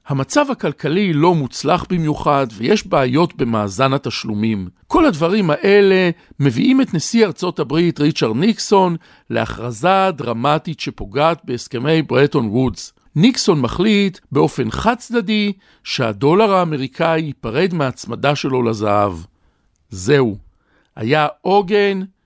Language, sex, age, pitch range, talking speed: Hebrew, male, 50-69, 125-180 Hz, 105 wpm